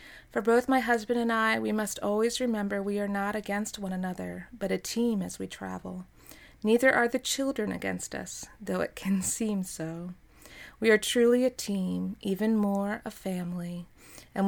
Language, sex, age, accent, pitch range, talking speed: English, female, 30-49, American, 175-215 Hz, 180 wpm